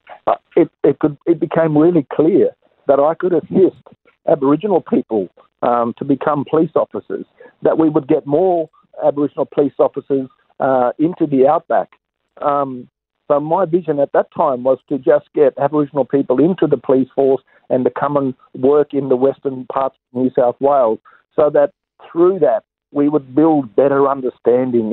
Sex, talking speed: male, 165 wpm